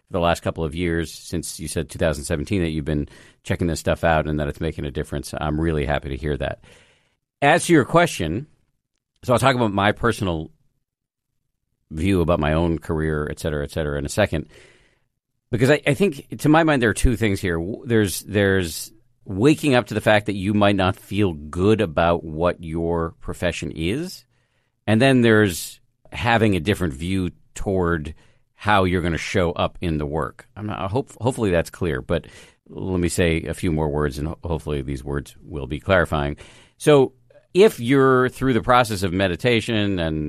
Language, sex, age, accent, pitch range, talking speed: English, male, 50-69, American, 80-115 Hz, 190 wpm